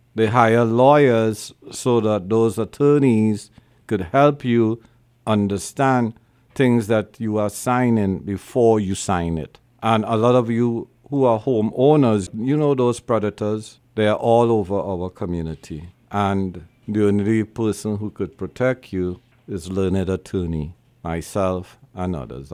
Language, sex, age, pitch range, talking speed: English, male, 50-69, 95-115 Hz, 140 wpm